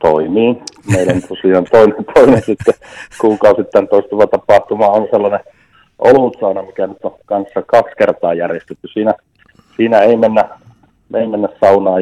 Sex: male